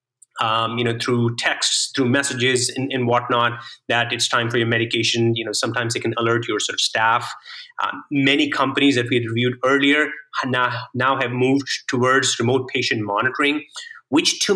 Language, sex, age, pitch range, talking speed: English, male, 30-49, 120-145 Hz, 180 wpm